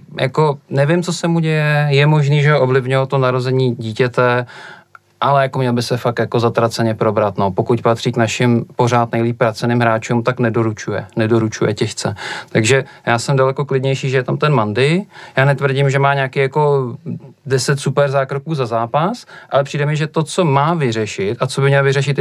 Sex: male